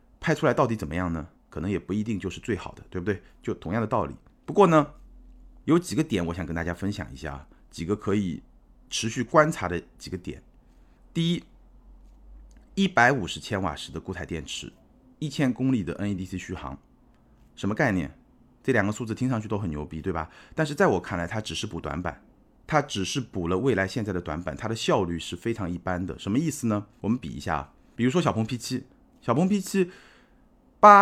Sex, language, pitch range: male, Chinese, 90-150 Hz